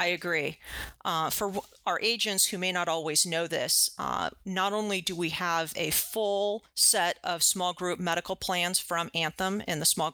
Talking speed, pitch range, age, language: 185 wpm, 165-190 Hz, 40-59, English